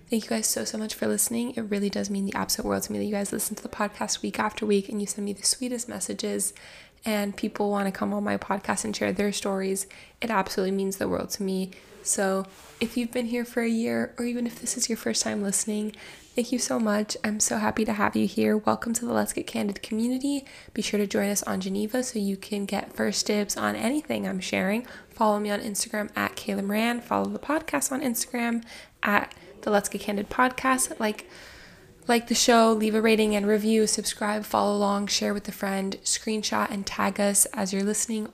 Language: English